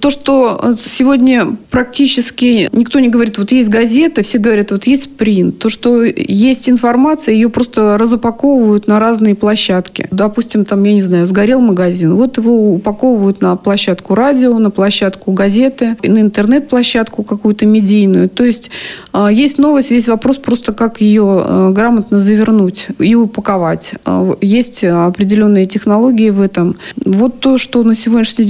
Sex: female